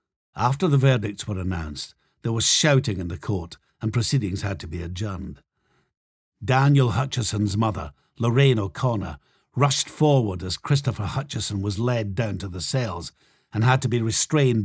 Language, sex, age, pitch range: English, male, 60-79, 95-130 Hz